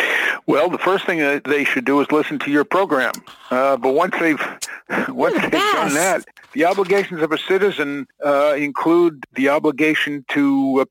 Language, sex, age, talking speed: English, male, 50-69, 165 wpm